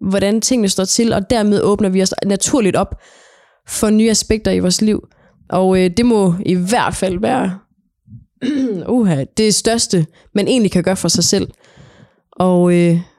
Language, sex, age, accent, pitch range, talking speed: Danish, female, 20-39, native, 190-235 Hz, 165 wpm